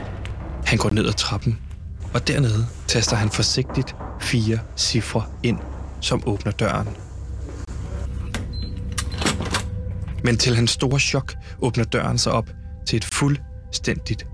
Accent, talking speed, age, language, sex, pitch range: native, 115 wpm, 20-39, Danish, male, 95-120 Hz